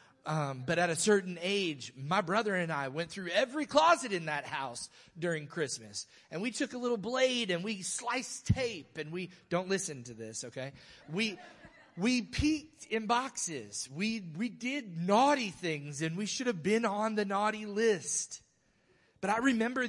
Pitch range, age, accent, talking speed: 145-210 Hz, 30-49, American, 175 wpm